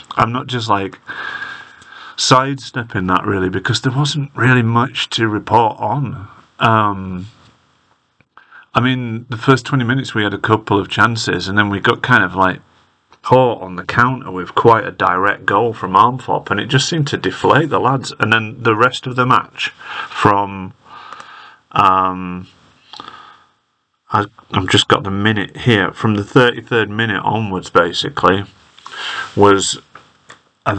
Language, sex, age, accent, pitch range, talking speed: English, male, 40-59, British, 95-115 Hz, 150 wpm